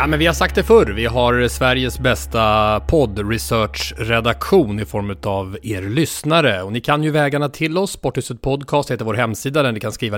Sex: male